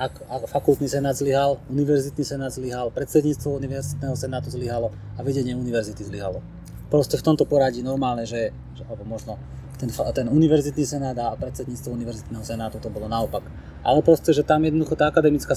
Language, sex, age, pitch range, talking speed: Slovak, male, 30-49, 115-140 Hz, 165 wpm